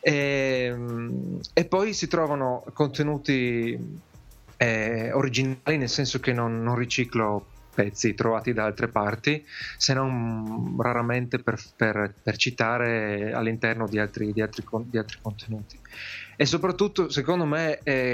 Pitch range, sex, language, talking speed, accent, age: 115-130 Hz, male, Italian, 115 wpm, native, 30-49